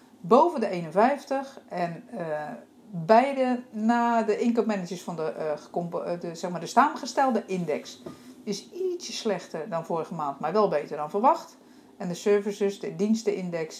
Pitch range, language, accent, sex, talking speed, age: 175-240 Hz, Dutch, Dutch, female, 150 wpm, 50-69